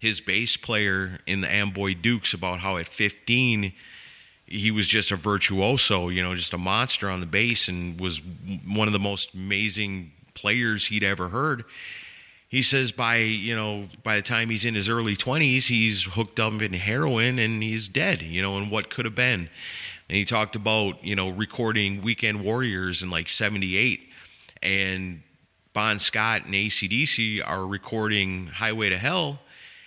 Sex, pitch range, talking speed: male, 100-125 Hz, 170 wpm